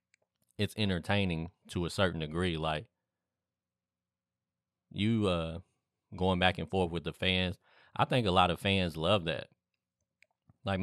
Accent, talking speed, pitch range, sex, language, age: American, 140 wpm, 80-100 Hz, male, English, 20-39